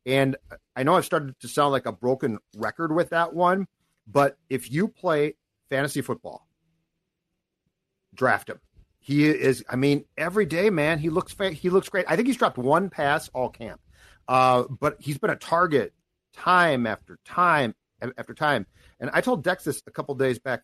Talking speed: 185 wpm